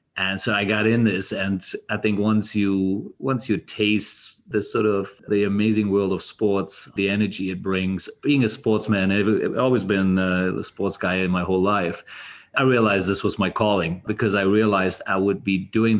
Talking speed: 195 wpm